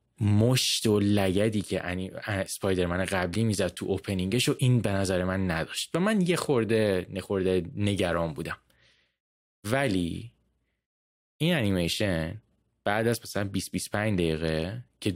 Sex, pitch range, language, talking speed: male, 90-105 Hz, Persian, 125 wpm